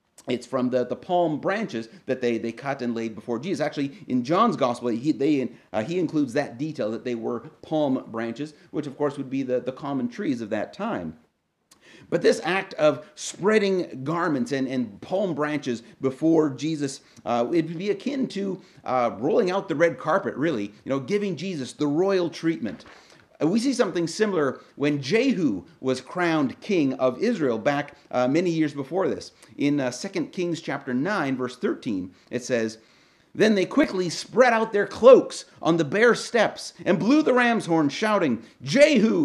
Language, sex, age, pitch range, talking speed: English, male, 40-59, 135-195 Hz, 180 wpm